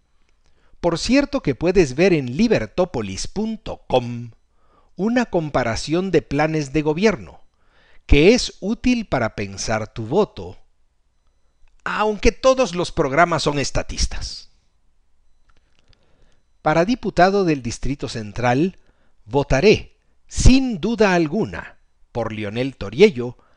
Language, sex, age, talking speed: Spanish, male, 50-69, 95 wpm